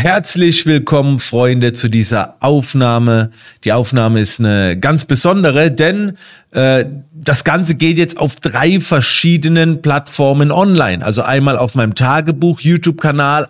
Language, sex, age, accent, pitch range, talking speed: German, male, 30-49, German, 125-155 Hz, 125 wpm